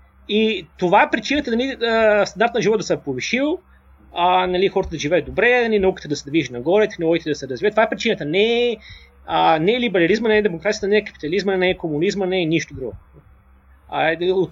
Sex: male